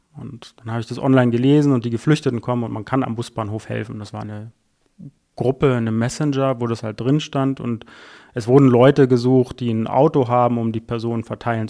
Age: 30-49